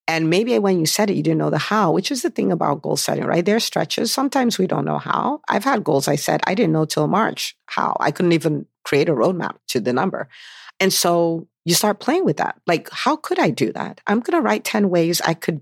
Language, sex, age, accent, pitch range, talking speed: English, female, 50-69, American, 160-210 Hz, 260 wpm